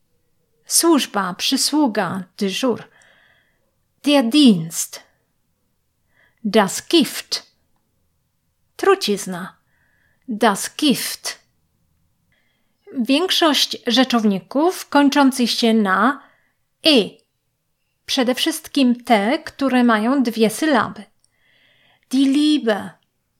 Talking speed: 65 wpm